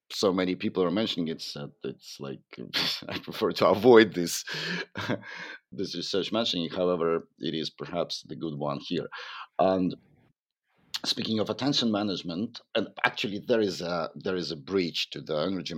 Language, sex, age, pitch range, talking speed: English, male, 50-69, 80-95 Hz, 165 wpm